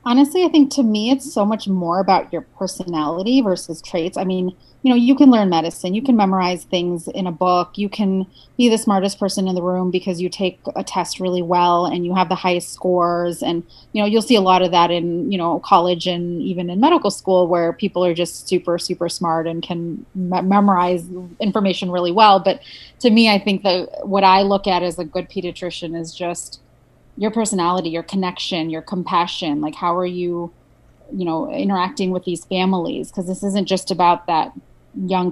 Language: English